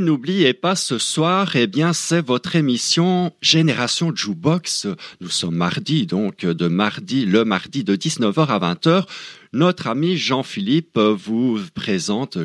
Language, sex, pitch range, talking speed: French, male, 120-165 Hz, 140 wpm